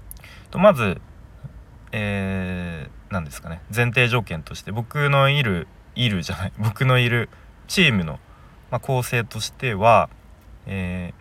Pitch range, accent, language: 85-120 Hz, native, Japanese